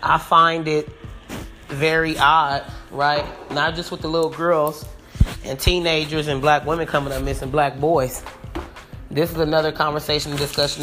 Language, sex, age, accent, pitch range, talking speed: English, male, 20-39, American, 140-160 Hz, 155 wpm